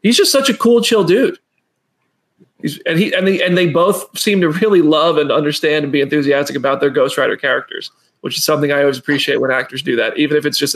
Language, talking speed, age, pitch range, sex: English, 240 wpm, 20-39, 150-185 Hz, male